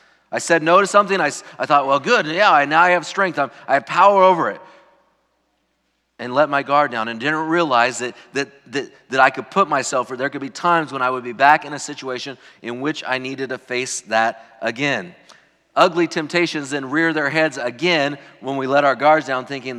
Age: 40-59